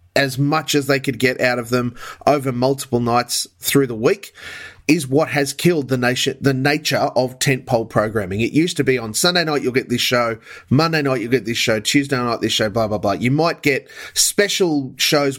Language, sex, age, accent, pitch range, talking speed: English, male, 30-49, Australian, 120-155 Hz, 215 wpm